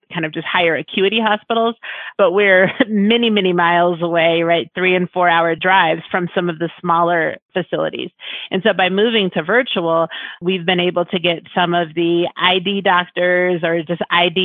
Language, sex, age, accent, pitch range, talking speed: English, female, 30-49, American, 165-185 Hz, 180 wpm